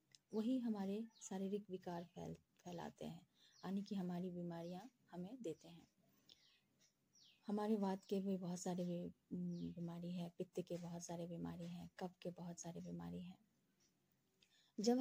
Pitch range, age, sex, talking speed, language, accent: 175-225 Hz, 20-39, female, 145 wpm, Hindi, native